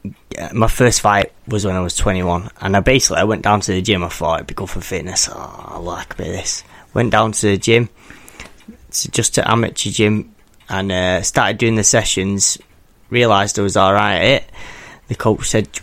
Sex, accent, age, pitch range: male, British, 20-39, 95-110 Hz